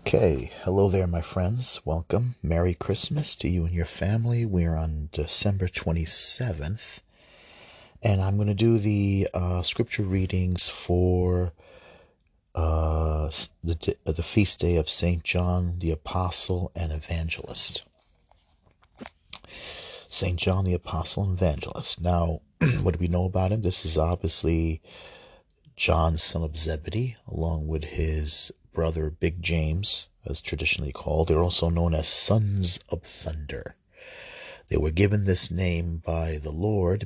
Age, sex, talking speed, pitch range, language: 40-59, male, 135 wpm, 80-90 Hz, English